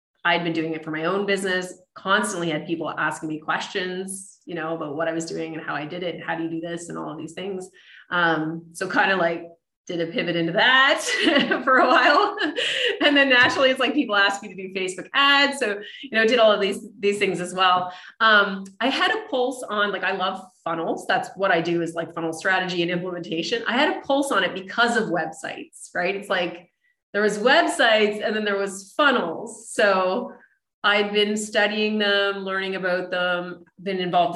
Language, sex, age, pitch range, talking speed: English, female, 30-49, 175-220 Hz, 215 wpm